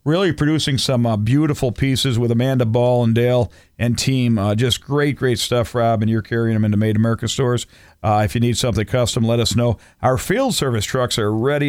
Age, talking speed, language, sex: 50-69, 215 wpm, English, male